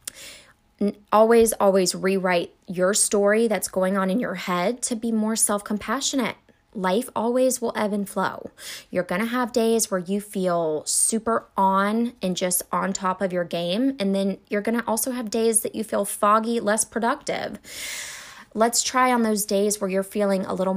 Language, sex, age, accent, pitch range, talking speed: English, female, 20-39, American, 190-230 Hz, 180 wpm